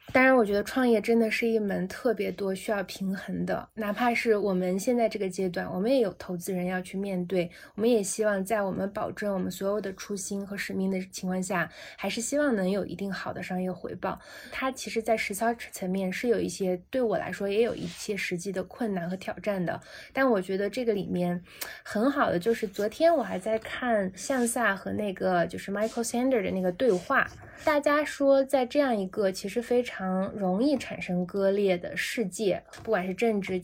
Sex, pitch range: female, 190-230 Hz